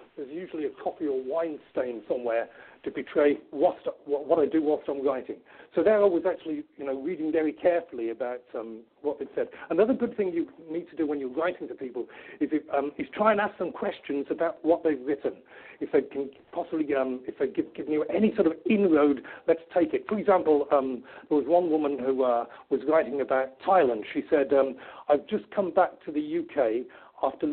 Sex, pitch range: male, 145-200 Hz